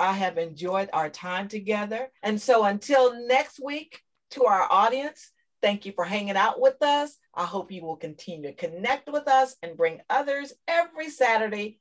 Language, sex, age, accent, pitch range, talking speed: English, female, 50-69, American, 170-260 Hz, 180 wpm